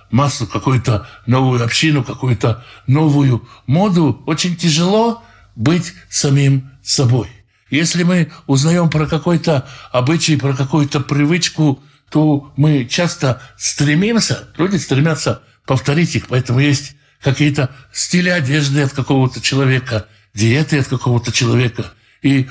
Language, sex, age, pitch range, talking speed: Russian, male, 60-79, 125-160 Hz, 110 wpm